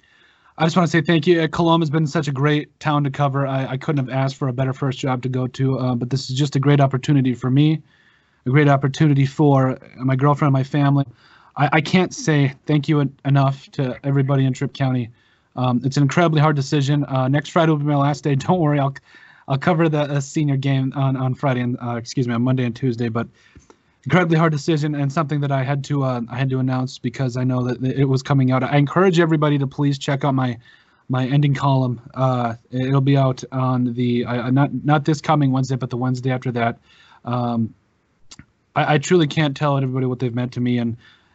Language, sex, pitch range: English, male, 130-145 Hz